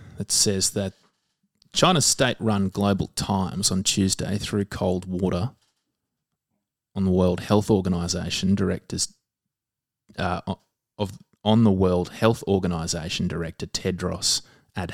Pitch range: 90-110 Hz